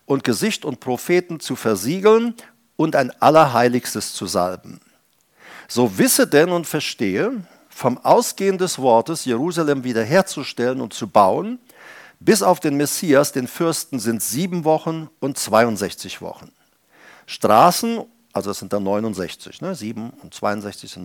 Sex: male